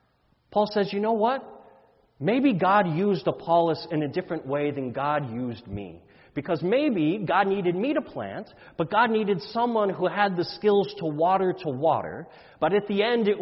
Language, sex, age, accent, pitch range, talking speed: English, male, 30-49, American, 170-220 Hz, 185 wpm